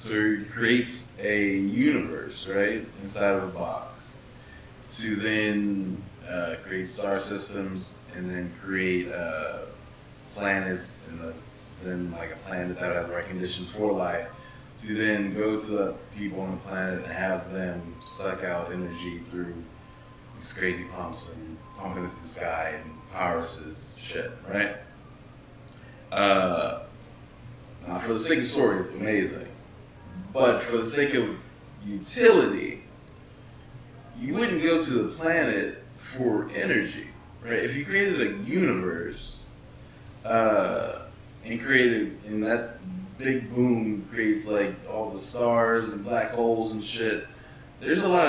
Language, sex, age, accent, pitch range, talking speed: English, male, 30-49, American, 95-120 Hz, 135 wpm